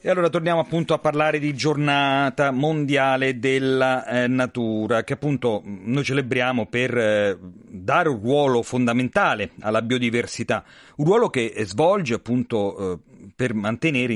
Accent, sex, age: native, male, 40-59